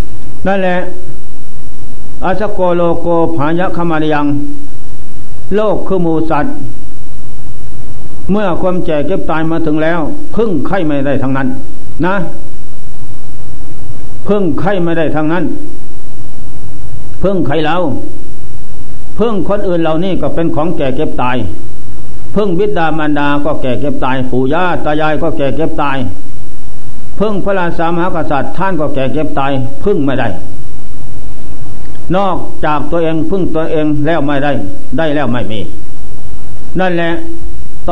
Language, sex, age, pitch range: Thai, male, 60-79, 125-170 Hz